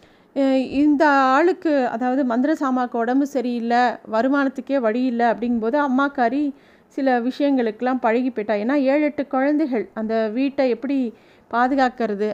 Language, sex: Tamil, female